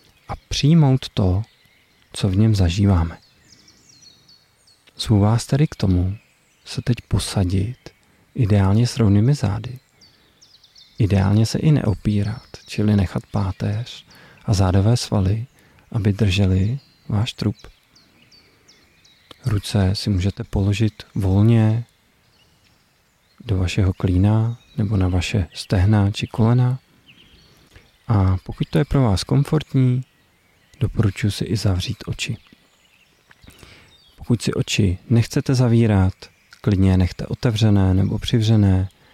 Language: Czech